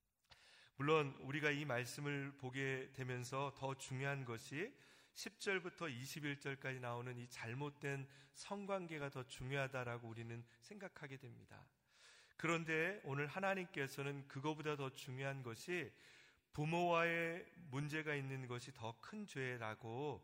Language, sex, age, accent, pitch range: Korean, male, 40-59, native, 120-150 Hz